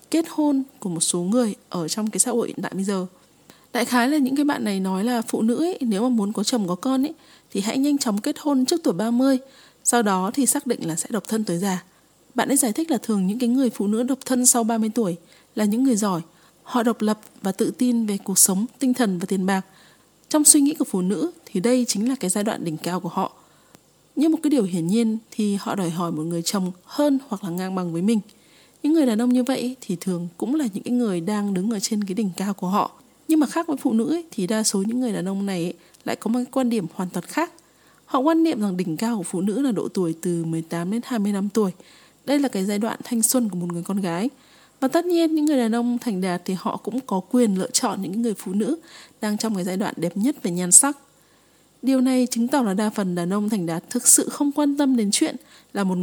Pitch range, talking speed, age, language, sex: 195-265 Hz, 265 wpm, 20-39, Vietnamese, female